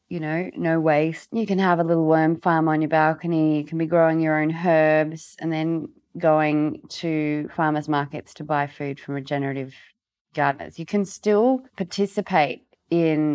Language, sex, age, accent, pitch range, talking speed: English, female, 30-49, Australian, 150-180 Hz, 170 wpm